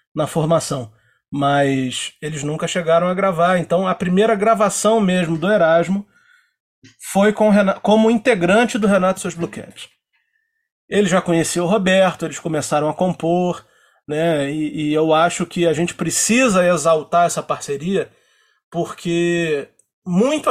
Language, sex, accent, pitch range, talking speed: Portuguese, male, Brazilian, 170-215 Hz, 130 wpm